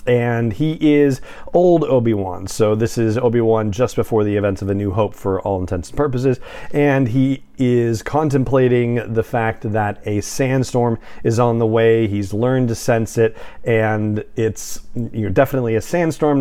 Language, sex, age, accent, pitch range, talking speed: English, male, 40-59, American, 105-130 Hz, 165 wpm